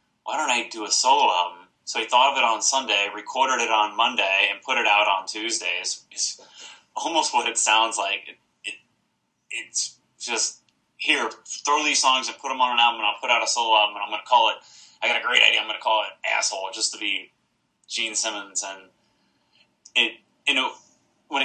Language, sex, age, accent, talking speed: English, male, 30-49, American, 215 wpm